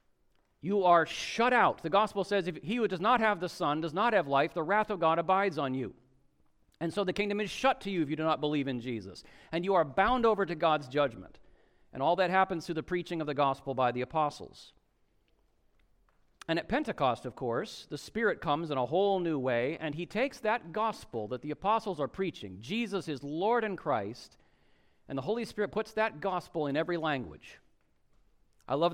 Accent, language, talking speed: American, English, 210 wpm